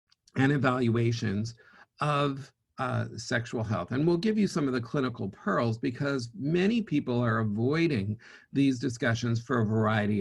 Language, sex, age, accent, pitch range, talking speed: English, male, 50-69, American, 115-150 Hz, 145 wpm